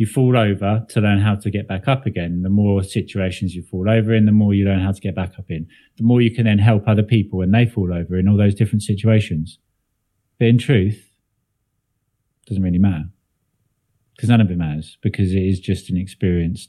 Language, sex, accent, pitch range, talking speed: English, male, British, 95-115 Hz, 225 wpm